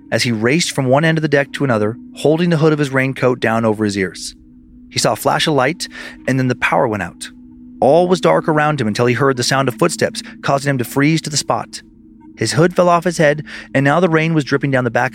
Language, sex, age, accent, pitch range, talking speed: English, male, 30-49, American, 120-155 Hz, 265 wpm